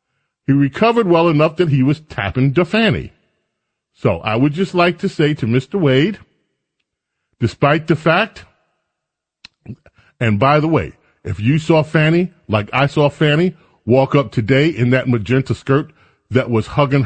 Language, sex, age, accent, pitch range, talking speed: English, male, 40-59, American, 130-175 Hz, 160 wpm